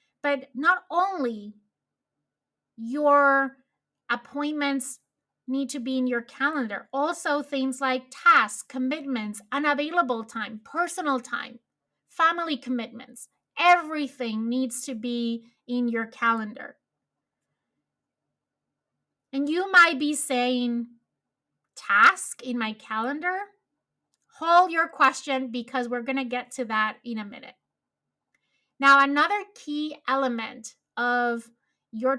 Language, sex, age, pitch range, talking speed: English, female, 30-49, 245-295 Hz, 105 wpm